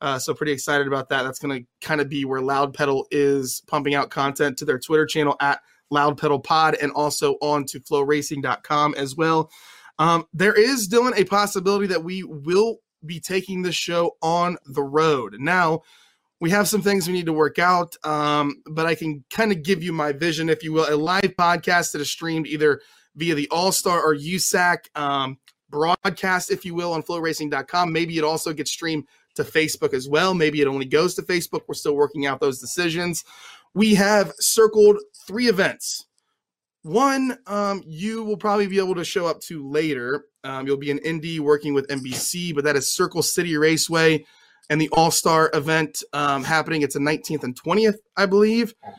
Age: 20-39